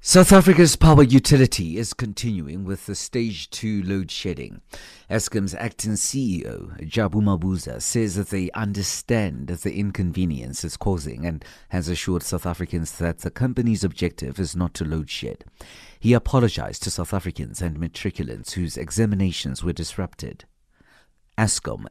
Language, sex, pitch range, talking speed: English, male, 85-110 Hz, 140 wpm